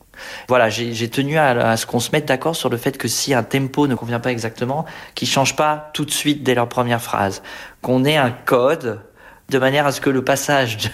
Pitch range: 115-145 Hz